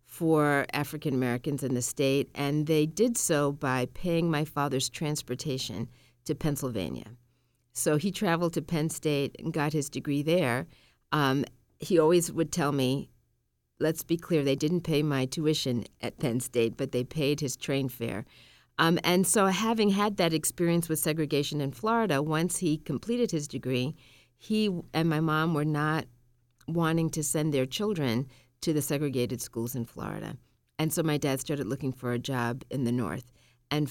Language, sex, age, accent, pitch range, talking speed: English, female, 50-69, American, 125-160 Hz, 170 wpm